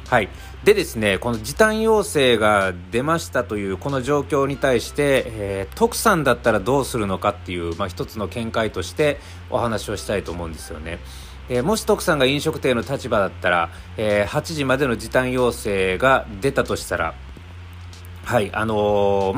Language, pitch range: Japanese, 95-140 Hz